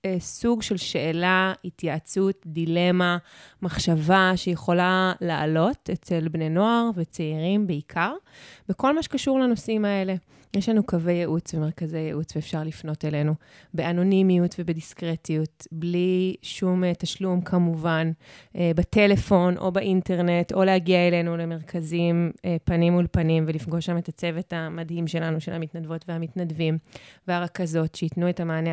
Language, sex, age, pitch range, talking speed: Hebrew, female, 20-39, 165-190 Hz, 115 wpm